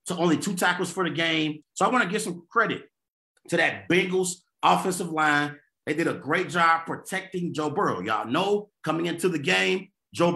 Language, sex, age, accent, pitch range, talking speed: English, male, 30-49, American, 150-190 Hz, 195 wpm